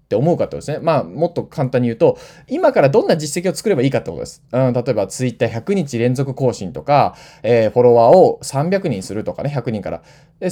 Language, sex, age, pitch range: Japanese, male, 20-39, 120-165 Hz